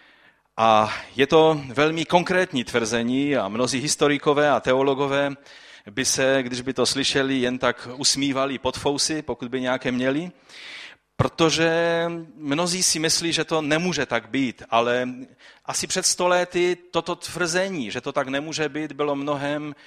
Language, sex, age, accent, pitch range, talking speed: Czech, male, 30-49, native, 130-170 Hz, 145 wpm